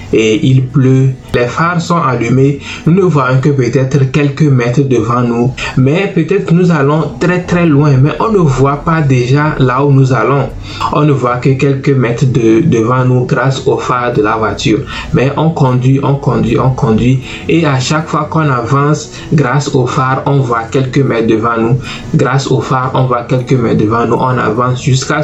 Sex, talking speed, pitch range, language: male, 195 wpm, 125-150 Hz, French